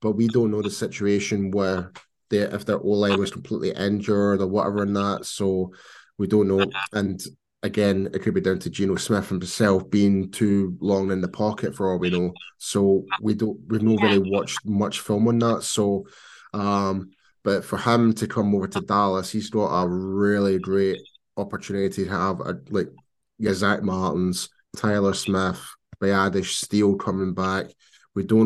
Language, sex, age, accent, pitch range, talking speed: English, male, 20-39, British, 95-105 Hz, 175 wpm